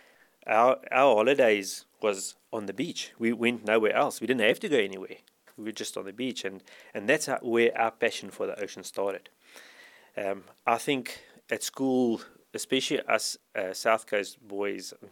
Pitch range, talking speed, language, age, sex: 100-125 Hz, 180 wpm, English, 30-49, male